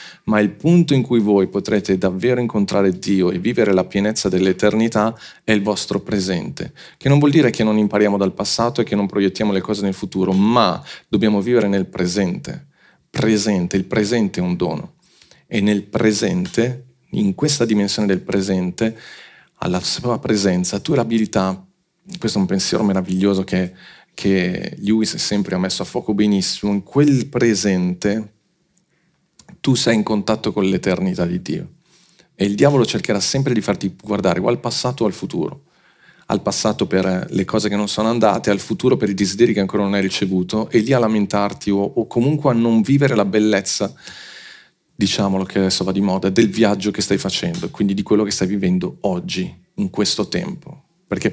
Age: 40-59